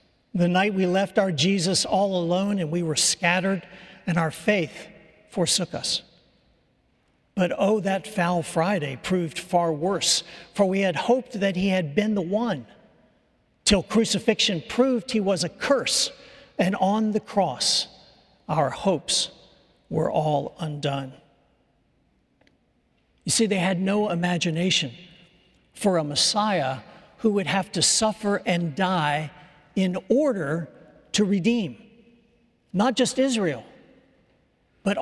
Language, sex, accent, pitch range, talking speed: English, male, American, 165-205 Hz, 130 wpm